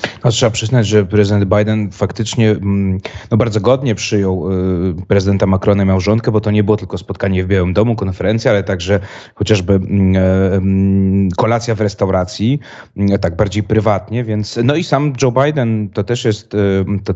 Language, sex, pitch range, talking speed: Polish, male, 100-115 Hz, 160 wpm